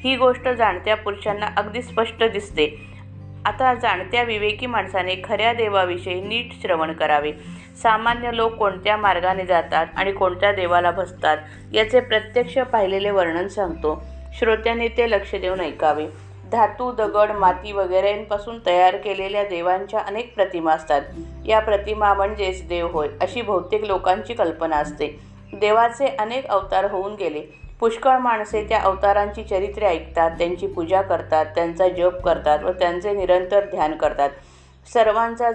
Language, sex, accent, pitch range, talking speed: Marathi, female, native, 165-210 Hz, 135 wpm